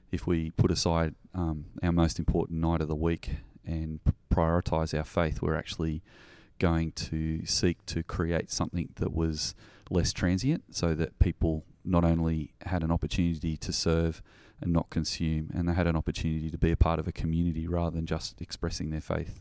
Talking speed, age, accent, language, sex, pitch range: 180 wpm, 30-49, Australian, English, male, 80-90 Hz